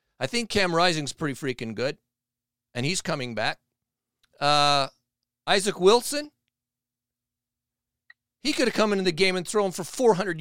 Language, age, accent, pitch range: English, 40-59, American, 120-170 Hz